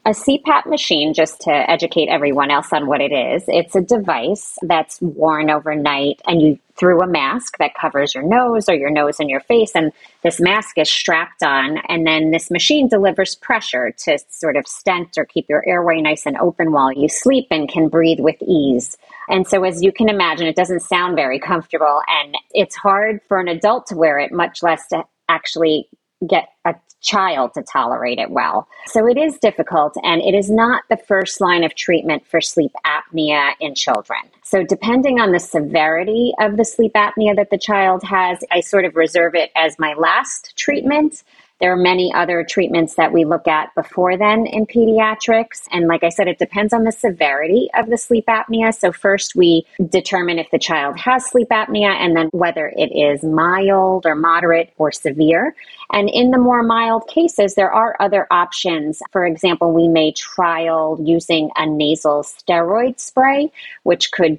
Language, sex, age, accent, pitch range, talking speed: English, female, 30-49, American, 160-205 Hz, 190 wpm